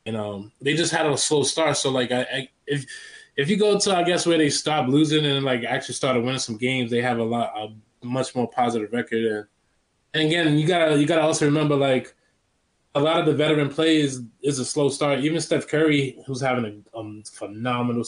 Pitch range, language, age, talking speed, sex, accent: 115-145 Hz, English, 20-39, 225 wpm, male, American